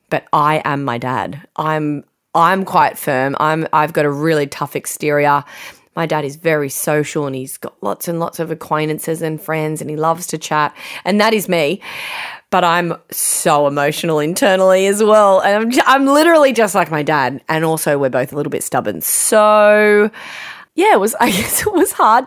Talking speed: 195 wpm